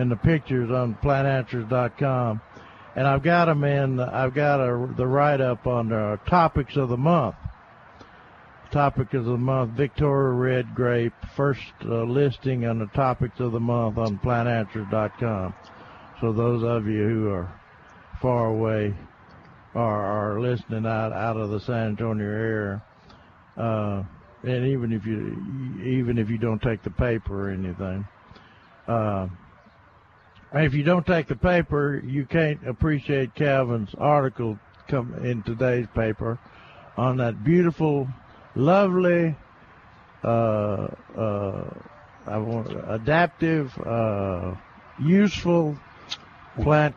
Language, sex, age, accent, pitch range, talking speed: English, male, 60-79, American, 110-140 Hz, 125 wpm